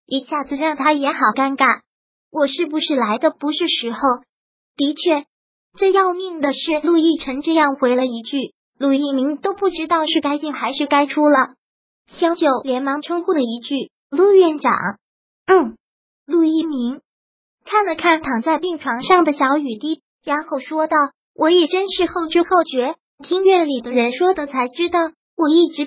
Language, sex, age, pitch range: Chinese, male, 20-39, 270-330 Hz